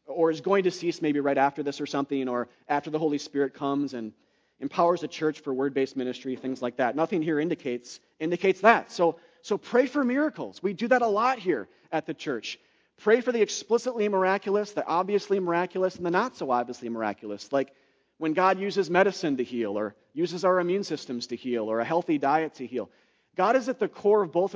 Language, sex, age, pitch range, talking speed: English, male, 30-49, 135-185 Hz, 215 wpm